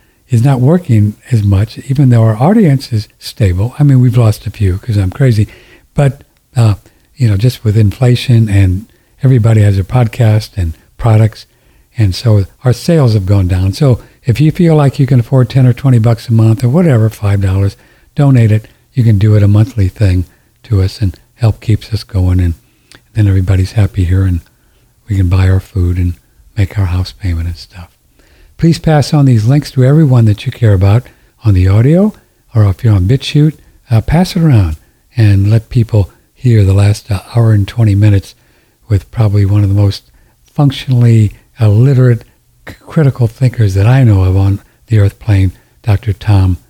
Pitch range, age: 100-130 Hz, 60-79